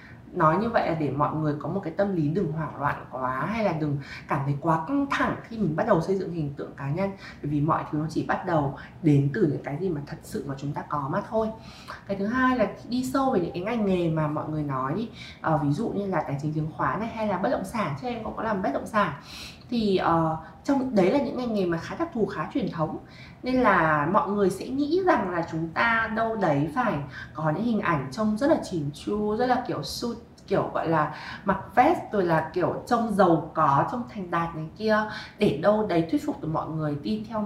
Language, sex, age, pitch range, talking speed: Vietnamese, female, 20-39, 155-220 Hz, 260 wpm